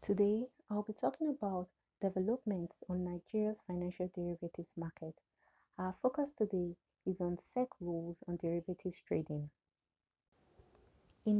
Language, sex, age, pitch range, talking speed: English, female, 30-49, 170-205 Hz, 115 wpm